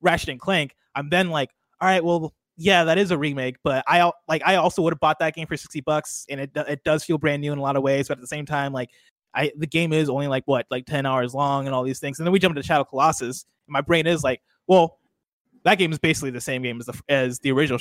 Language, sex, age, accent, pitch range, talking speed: English, male, 20-39, American, 130-170 Hz, 285 wpm